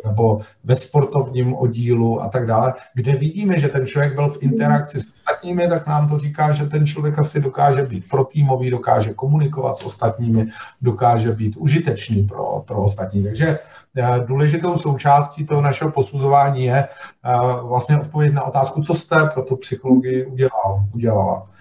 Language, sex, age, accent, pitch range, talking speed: Czech, male, 50-69, native, 115-145 Hz, 160 wpm